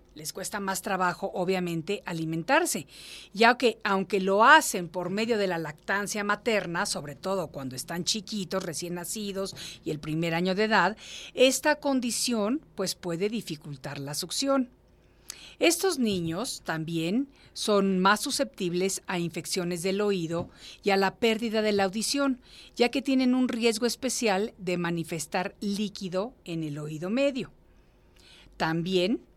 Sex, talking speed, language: female, 140 wpm, Spanish